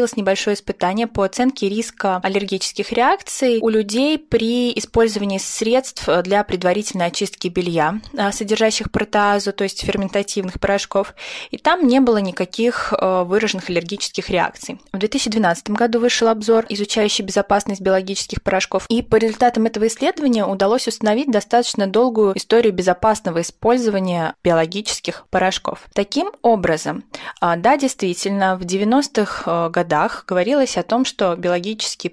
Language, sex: Russian, female